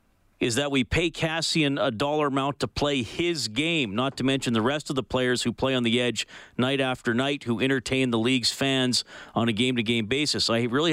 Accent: American